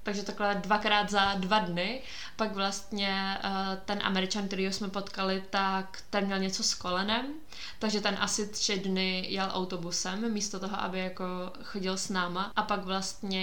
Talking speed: 155 wpm